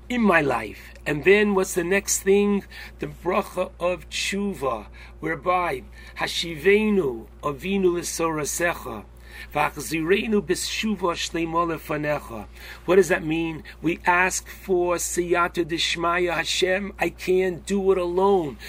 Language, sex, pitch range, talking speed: English, male, 170-200 Hz, 105 wpm